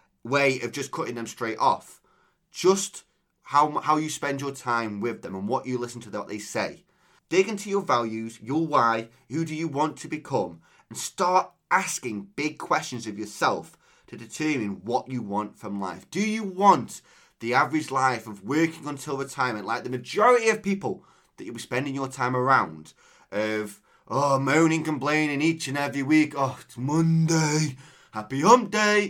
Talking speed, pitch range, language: 175 wpm, 120-165 Hz, English